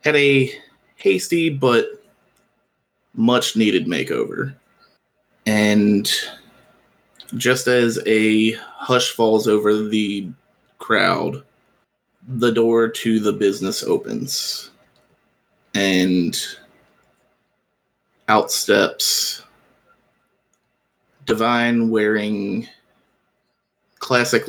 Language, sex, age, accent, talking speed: English, male, 20-39, American, 65 wpm